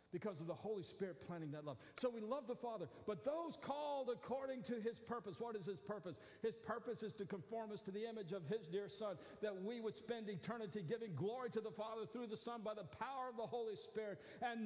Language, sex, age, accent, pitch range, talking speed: English, male, 50-69, American, 160-225 Hz, 240 wpm